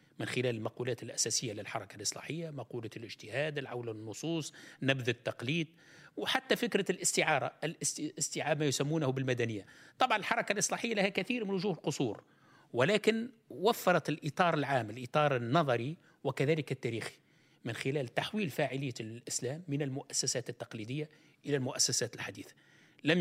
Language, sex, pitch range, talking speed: Arabic, male, 125-165 Hz, 120 wpm